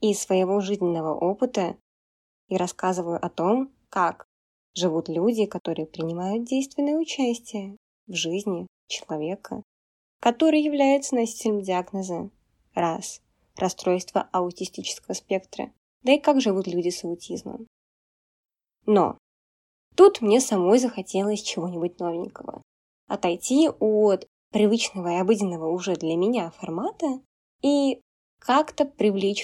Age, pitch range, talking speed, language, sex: 20-39, 175-240 Hz, 105 wpm, Russian, female